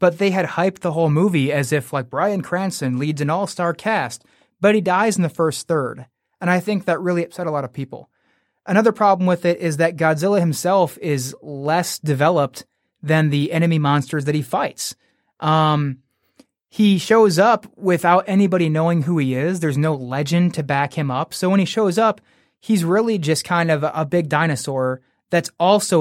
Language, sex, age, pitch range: English, male, 30-49, 150-195 Hz